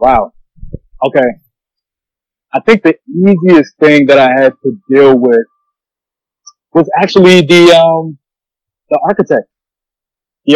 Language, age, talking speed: English, 30-49, 115 wpm